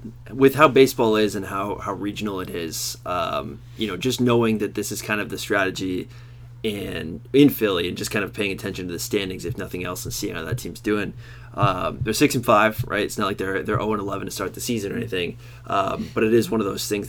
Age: 20-39